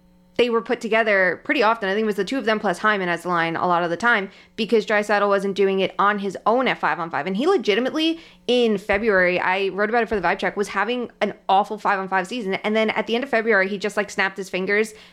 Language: English